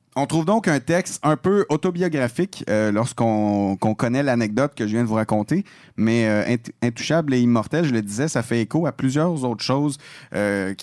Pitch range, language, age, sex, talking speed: 110-140 Hz, French, 30-49, male, 195 wpm